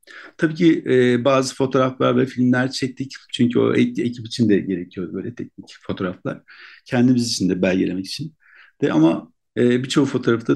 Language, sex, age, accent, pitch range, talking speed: Turkish, male, 60-79, native, 105-135 Hz, 160 wpm